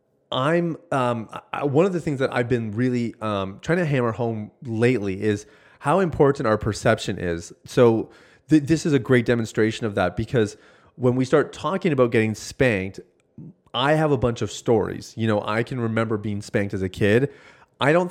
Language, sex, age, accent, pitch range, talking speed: English, male, 30-49, American, 105-135 Hz, 185 wpm